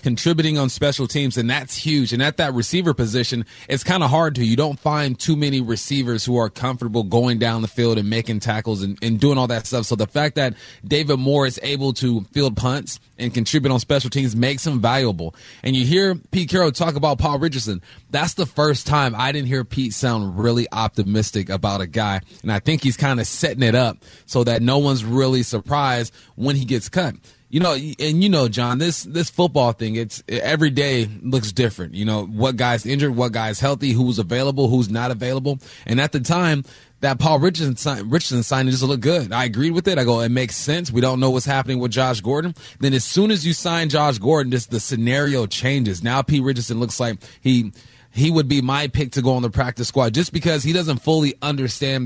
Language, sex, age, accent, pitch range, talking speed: English, male, 30-49, American, 120-145 Hz, 220 wpm